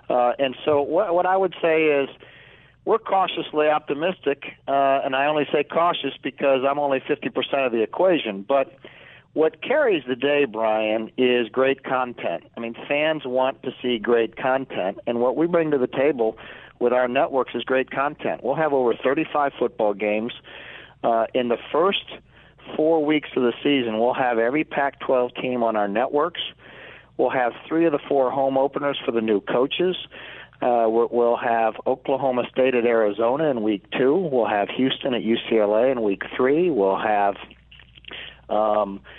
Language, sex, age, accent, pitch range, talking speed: English, male, 50-69, American, 115-140 Hz, 170 wpm